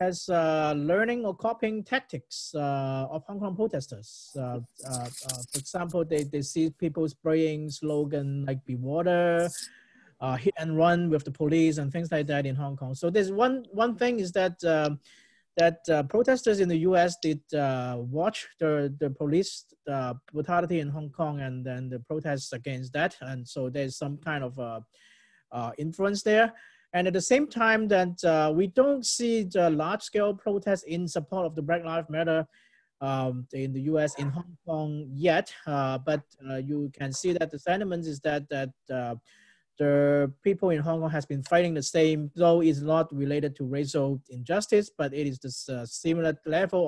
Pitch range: 135-175 Hz